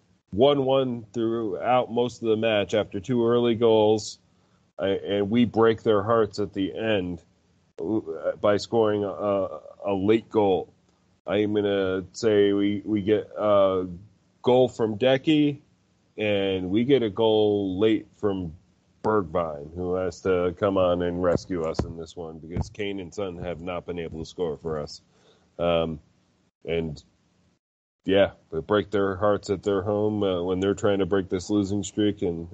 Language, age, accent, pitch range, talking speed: English, 30-49, American, 95-115 Hz, 160 wpm